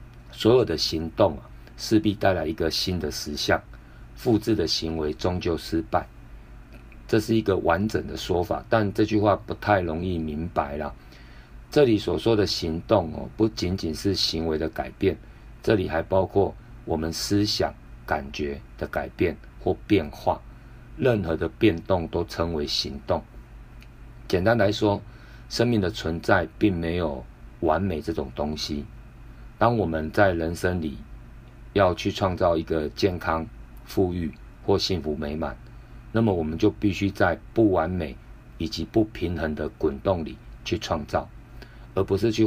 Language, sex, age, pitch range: Chinese, male, 50-69, 80-105 Hz